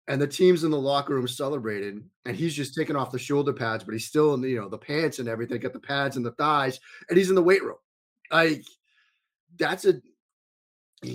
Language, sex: English, male